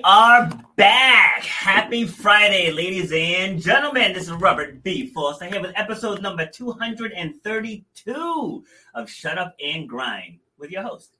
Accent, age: American, 30-49